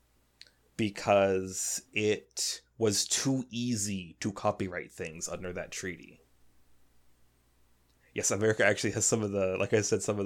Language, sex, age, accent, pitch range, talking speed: English, male, 20-39, American, 95-120 Hz, 135 wpm